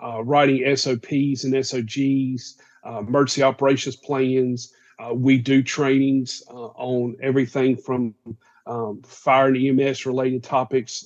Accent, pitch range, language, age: American, 120-135 Hz, English, 50-69